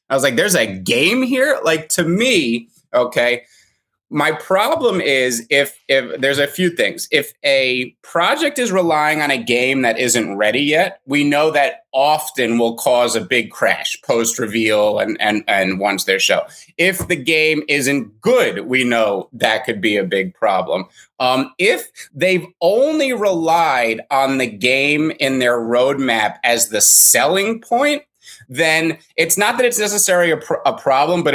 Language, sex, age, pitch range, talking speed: English, male, 30-49, 120-175 Hz, 165 wpm